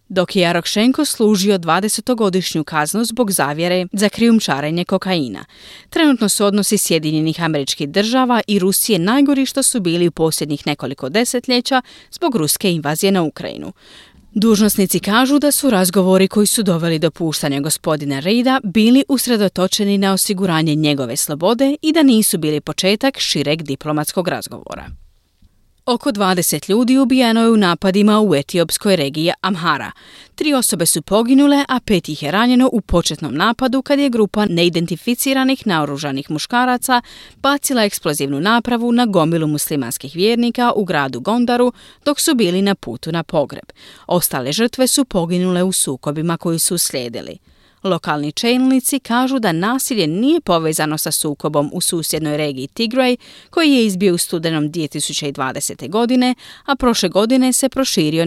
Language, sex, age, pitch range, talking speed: Croatian, female, 30-49, 155-235 Hz, 140 wpm